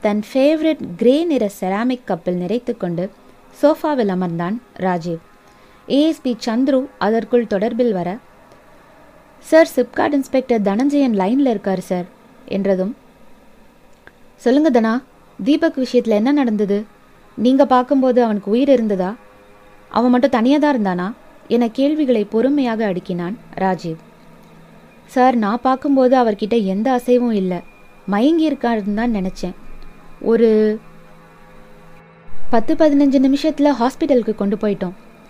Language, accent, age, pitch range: Tamil, native, 20-39, 195-255 Hz